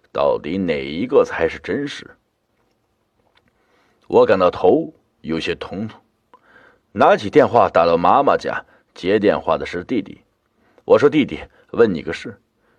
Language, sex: Chinese, male